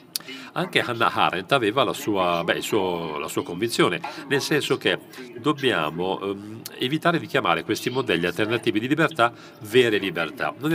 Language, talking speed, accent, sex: Italian, 155 wpm, native, male